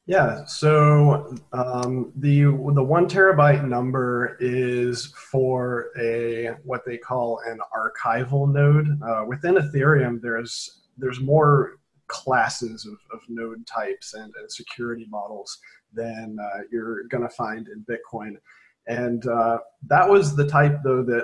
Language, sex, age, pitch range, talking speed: English, male, 30-49, 115-145 Hz, 135 wpm